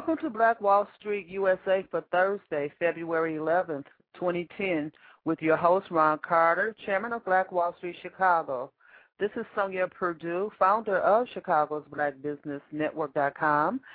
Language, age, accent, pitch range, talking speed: English, 40-59, American, 155-190 Hz, 130 wpm